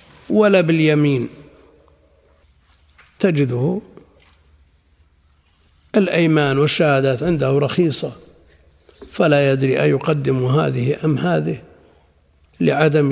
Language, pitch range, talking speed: Arabic, 115-155 Hz, 70 wpm